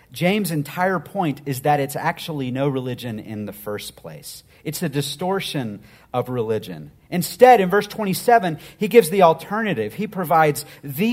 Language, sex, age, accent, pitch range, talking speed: English, male, 40-59, American, 135-180 Hz, 155 wpm